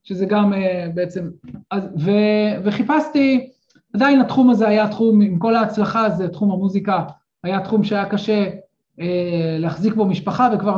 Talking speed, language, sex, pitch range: 135 wpm, Hebrew, male, 190-255 Hz